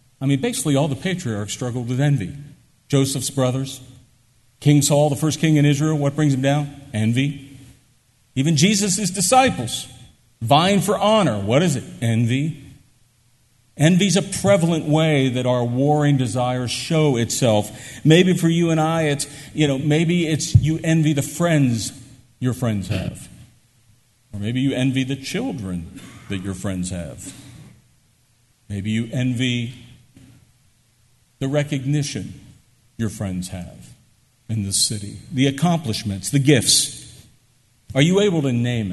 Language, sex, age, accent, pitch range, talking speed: English, male, 50-69, American, 120-150 Hz, 140 wpm